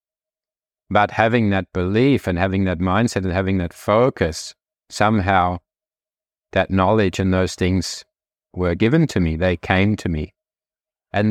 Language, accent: English, Australian